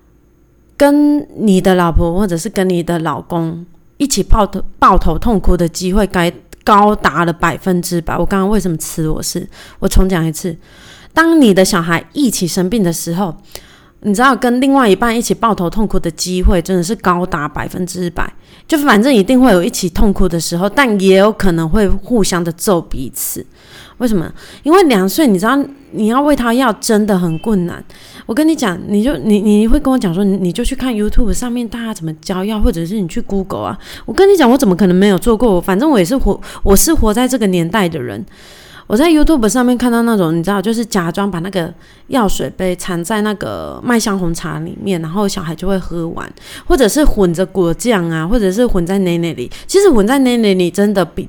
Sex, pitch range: female, 175-230 Hz